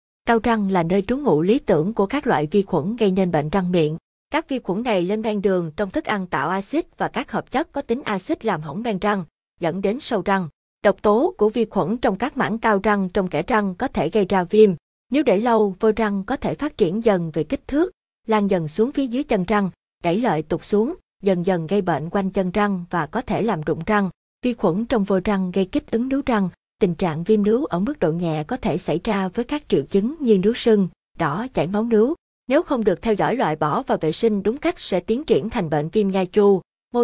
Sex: female